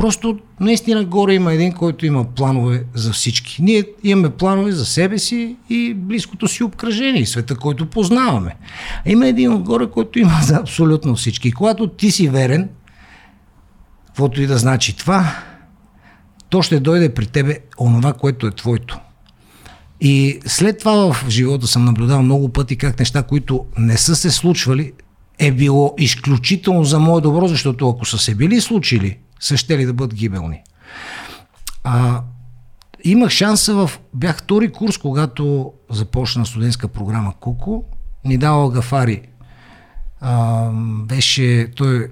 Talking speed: 140 wpm